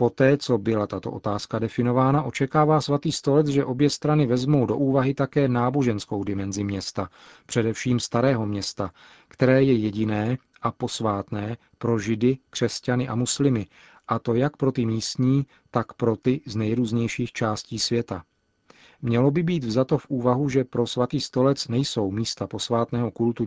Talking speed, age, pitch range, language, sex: 150 wpm, 40-59, 110-135 Hz, Czech, male